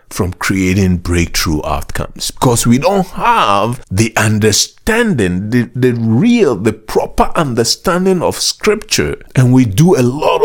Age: 50-69